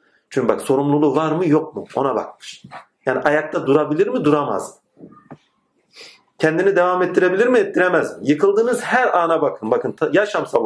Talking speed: 140 wpm